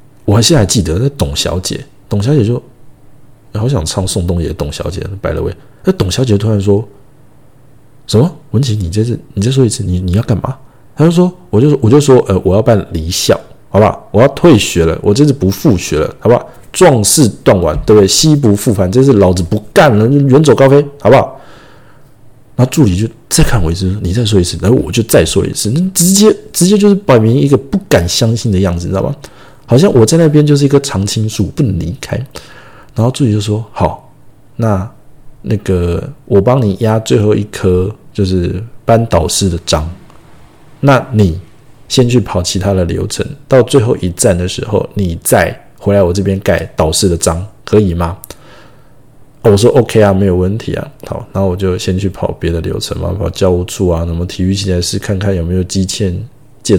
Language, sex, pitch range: Chinese, male, 95-135 Hz